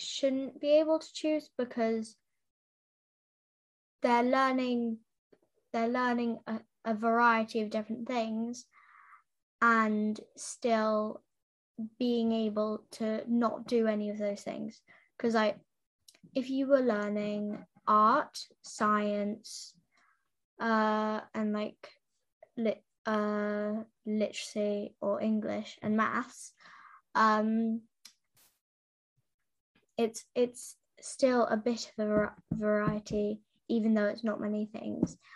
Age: 10-29